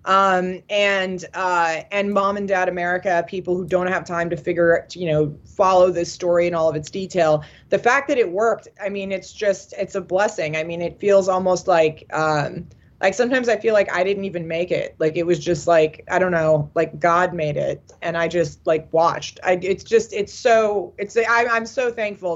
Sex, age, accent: female, 30-49, American